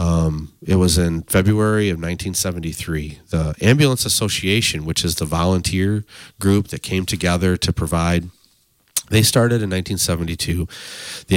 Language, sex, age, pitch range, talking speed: English, male, 30-49, 80-100 Hz, 130 wpm